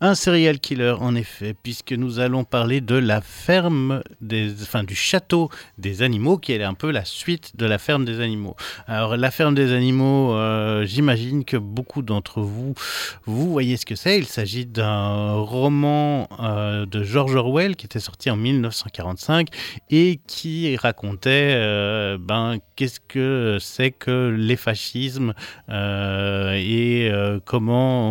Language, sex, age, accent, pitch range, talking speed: French, male, 30-49, French, 105-135 Hz, 155 wpm